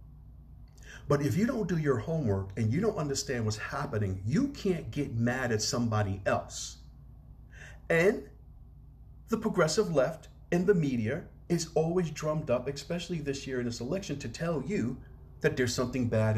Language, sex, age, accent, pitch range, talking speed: English, male, 50-69, American, 105-145 Hz, 160 wpm